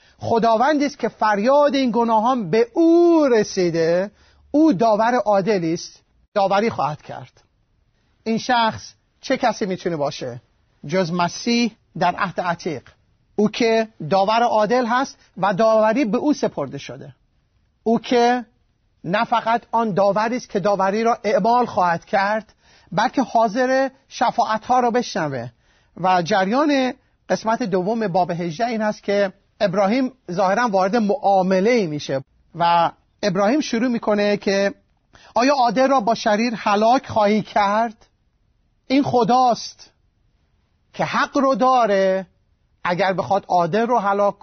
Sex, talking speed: male, 125 wpm